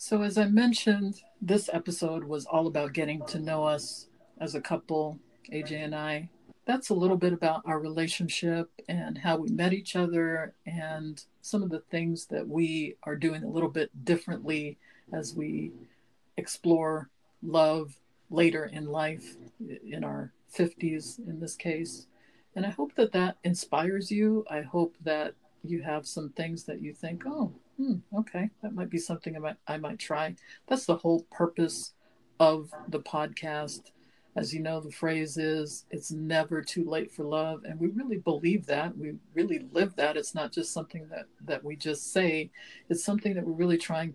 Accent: American